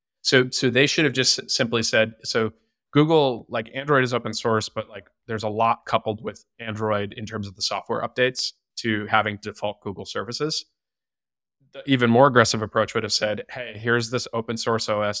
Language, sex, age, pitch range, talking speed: English, male, 20-39, 105-125 Hz, 190 wpm